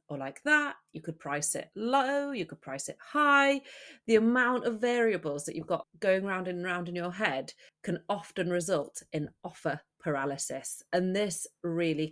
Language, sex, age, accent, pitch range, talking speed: English, female, 30-49, British, 160-225 Hz, 180 wpm